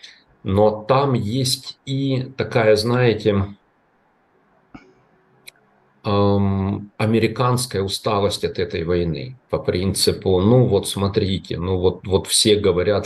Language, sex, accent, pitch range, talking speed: Russian, male, native, 90-120 Hz, 95 wpm